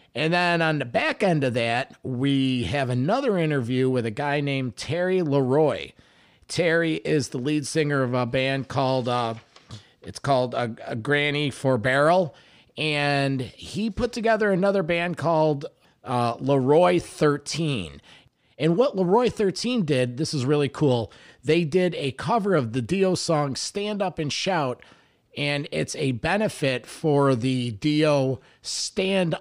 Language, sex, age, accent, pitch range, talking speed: English, male, 50-69, American, 125-165 Hz, 150 wpm